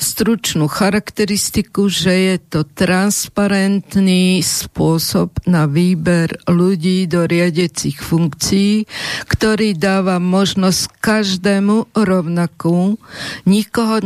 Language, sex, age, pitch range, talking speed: Slovak, female, 50-69, 170-195 Hz, 80 wpm